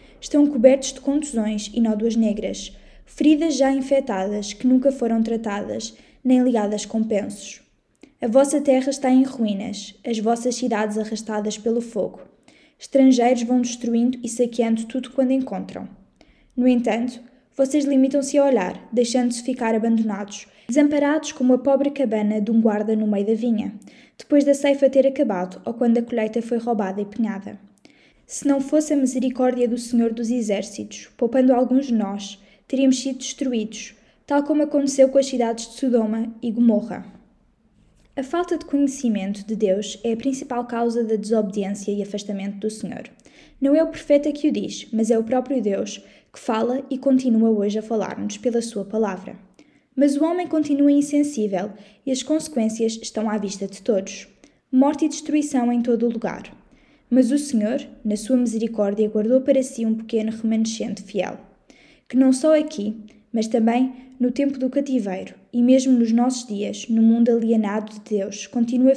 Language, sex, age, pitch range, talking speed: Portuguese, female, 10-29, 215-265 Hz, 165 wpm